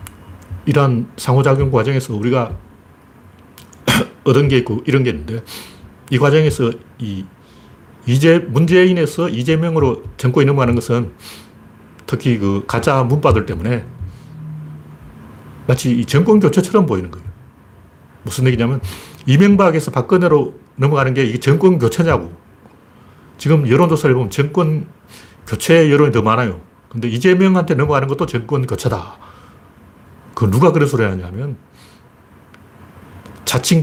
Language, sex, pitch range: Korean, male, 105-155 Hz